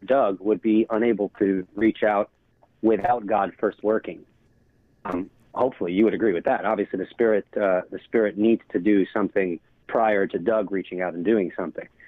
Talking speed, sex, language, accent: 180 wpm, male, English, American